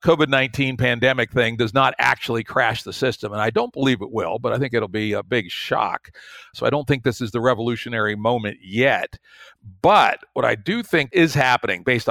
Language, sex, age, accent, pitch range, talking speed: English, male, 60-79, American, 120-150 Hz, 205 wpm